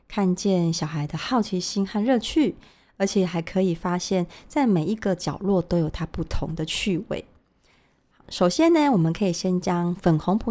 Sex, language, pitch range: female, Chinese, 165-210 Hz